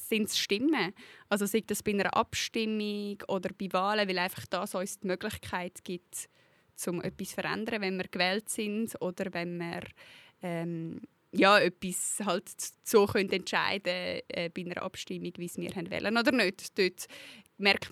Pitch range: 180-215 Hz